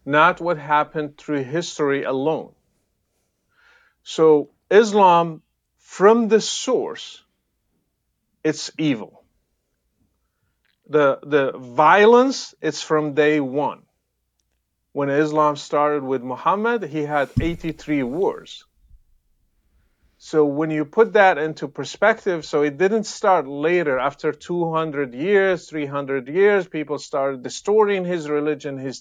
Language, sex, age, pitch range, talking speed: English, male, 40-59, 150-195 Hz, 110 wpm